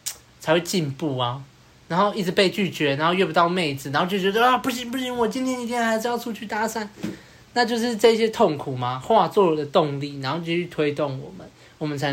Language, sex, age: Chinese, male, 20-39